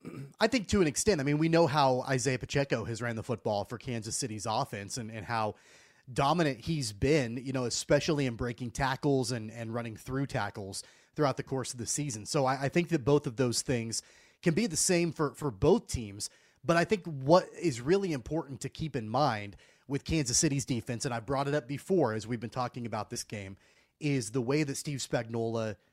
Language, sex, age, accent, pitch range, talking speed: English, male, 30-49, American, 120-160 Hz, 220 wpm